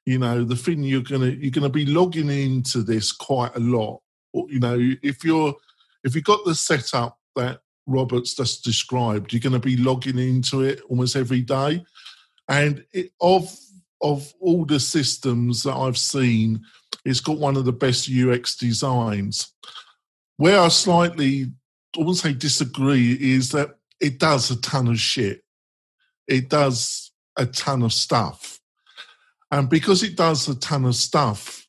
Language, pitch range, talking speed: English, 120-145 Hz, 160 wpm